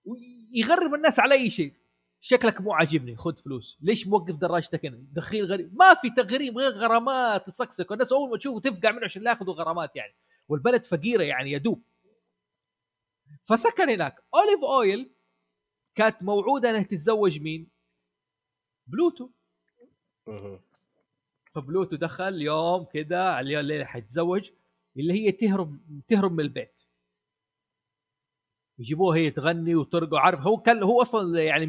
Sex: male